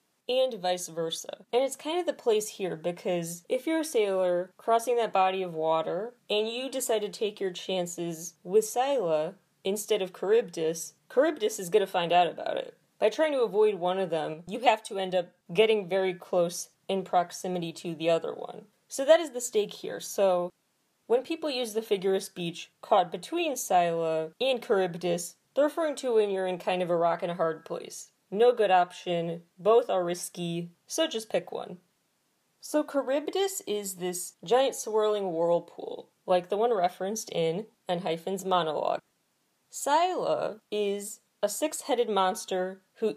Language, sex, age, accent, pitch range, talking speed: English, female, 20-39, American, 175-245 Hz, 175 wpm